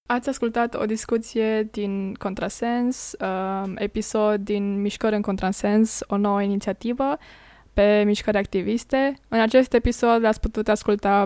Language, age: Romanian, 20-39